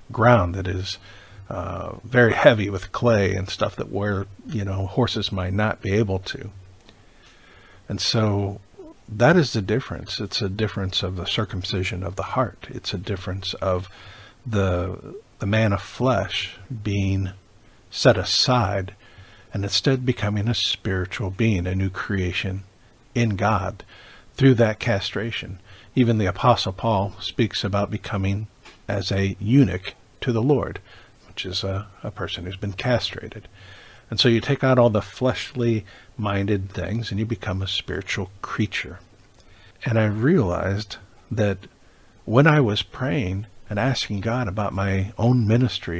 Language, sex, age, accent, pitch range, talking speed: English, male, 50-69, American, 95-115 Hz, 145 wpm